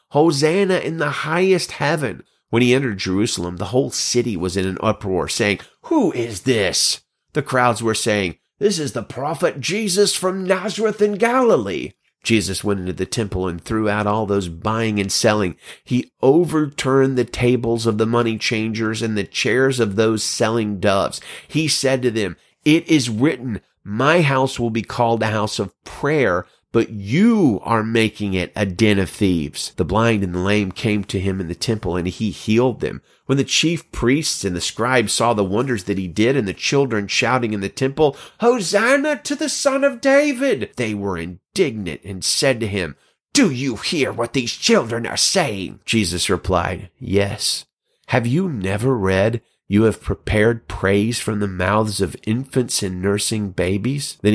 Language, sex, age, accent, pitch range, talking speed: English, male, 30-49, American, 100-135 Hz, 180 wpm